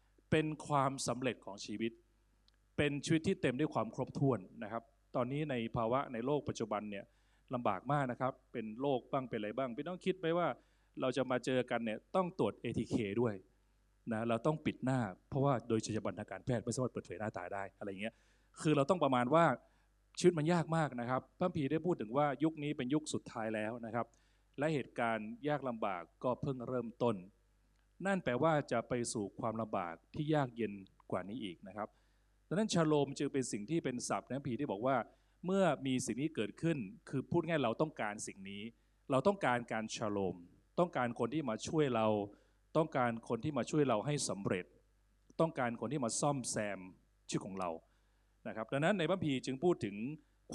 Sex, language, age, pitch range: male, Thai, 20-39, 110-155 Hz